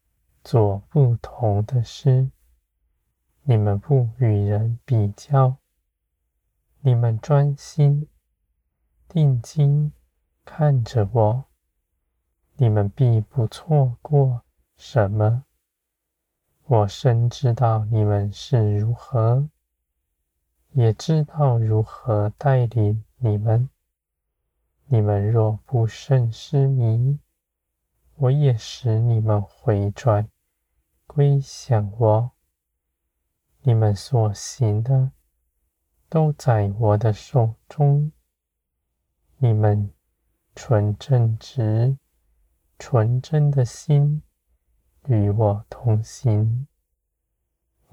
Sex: male